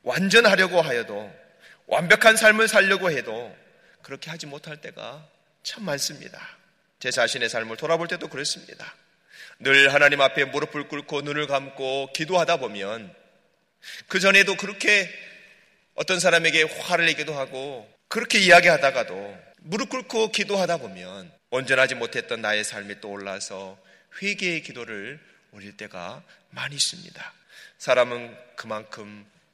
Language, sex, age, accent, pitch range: Korean, male, 30-49, native, 130-185 Hz